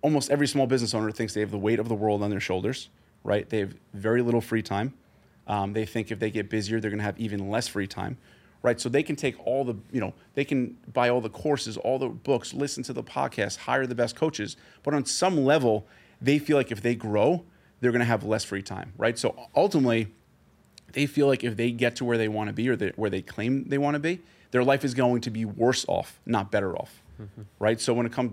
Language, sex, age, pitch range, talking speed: English, male, 30-49, 110-130 Hz, 255 wpm